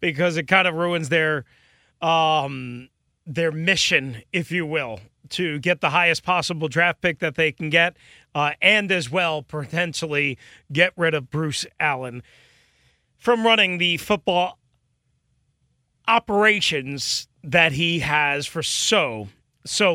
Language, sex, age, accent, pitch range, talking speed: English, male, 30-49, American, 145-180 Hz, 130 wpm